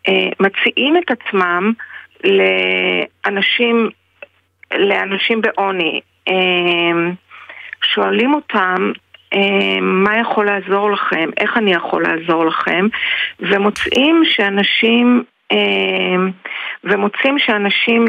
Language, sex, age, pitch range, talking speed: Hebrew, female, 40-59, 195-255 Hz, 65 wpm